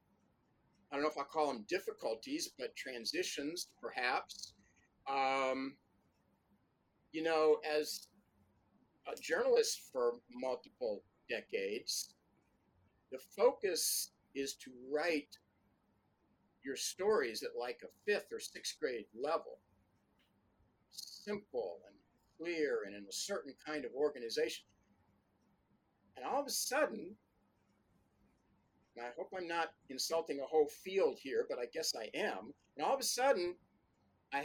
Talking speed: 120 wpm